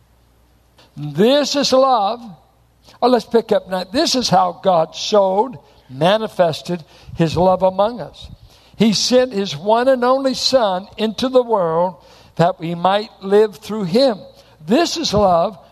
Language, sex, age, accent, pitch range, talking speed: English, male, 60-79, American, 185-235 Hz, 145 wpm